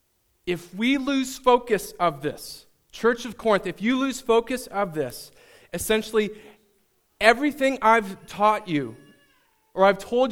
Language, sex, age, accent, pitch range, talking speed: English, male, 30-49, American, 175-230 Hz, 135 wpm